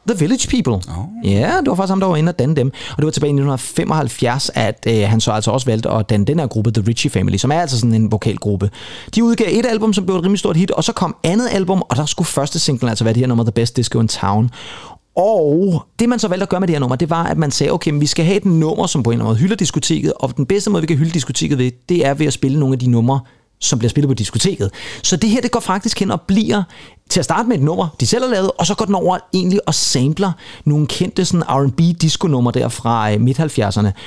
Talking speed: 285 wpm